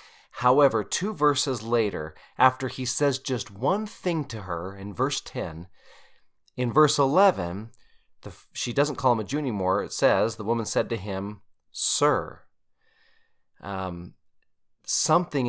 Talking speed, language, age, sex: 135 wpm, English, 30-49, male